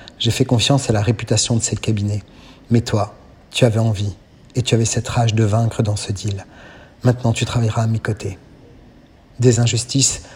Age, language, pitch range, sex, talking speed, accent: 50-69, Italian, 105-120 Hz, male, 185 wpm, French